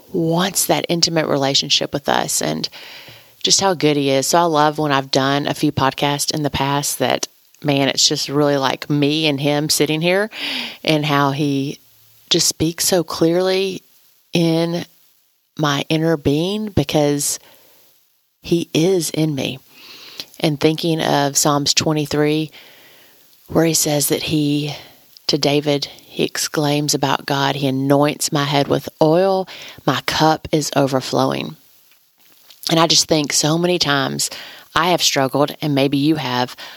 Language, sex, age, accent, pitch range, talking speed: English, female, 30-49, American, 140-170 Hz, 150 wpm